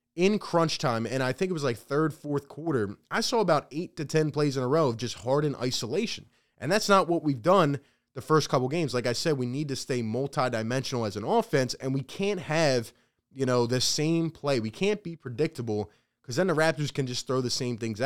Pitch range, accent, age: 120-155 Hz, American, 20-39